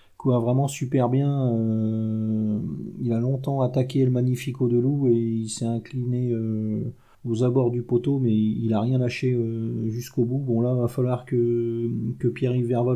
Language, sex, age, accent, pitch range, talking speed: French, male, 40-59, French, 115-130 Hz, 185 wpm